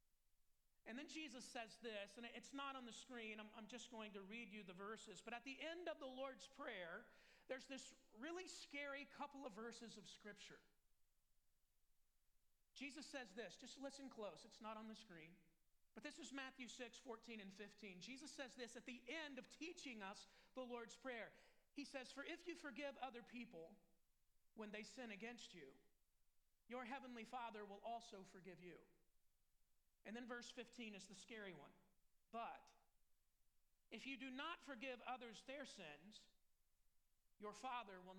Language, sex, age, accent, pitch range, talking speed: English, male, 40-59, American, 190-265 Hz, 170 wpm